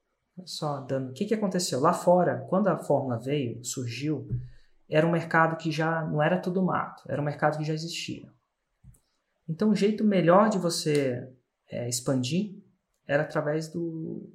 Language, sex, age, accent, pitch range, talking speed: Portuguese, male, 20-39, Brazilian, 145-180 Hz, 165 wpm